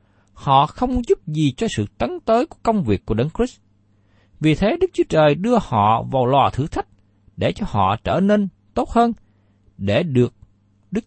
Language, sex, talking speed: Vietnamese, male, 190 wpm